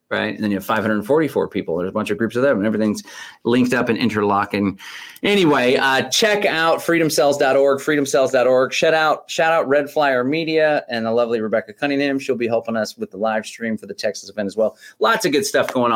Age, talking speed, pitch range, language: 30-49, 215 wpm, 95-135 Hz, English